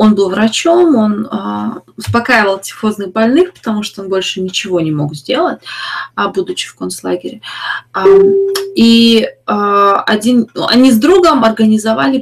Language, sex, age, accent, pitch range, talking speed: Russian, female, 20-39, native, 200-250 Hz, 115 wpm